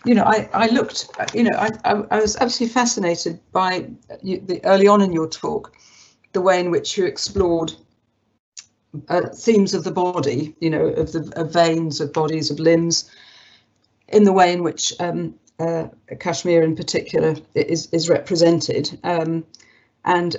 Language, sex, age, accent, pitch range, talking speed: English, female, 50-69, British, 160-195 Hz, 170 wpm